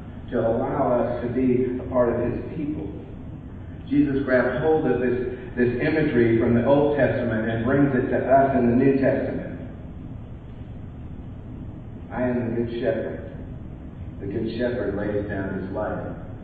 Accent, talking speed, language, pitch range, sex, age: American, 155 wpm, English, 105-130 Hz, male, 50-69